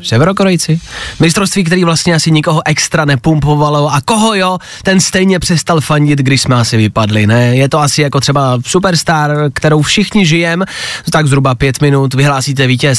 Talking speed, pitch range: 160 wpm, 135-190 Hz